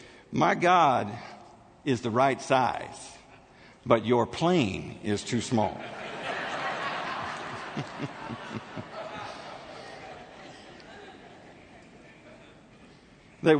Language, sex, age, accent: English, male, 50-69, American